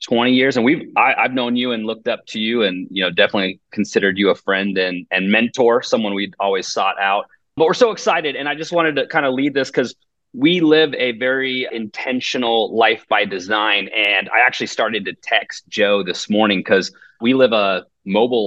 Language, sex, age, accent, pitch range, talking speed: English, male, 30-49, American, 100-135 Hz, 210 wpm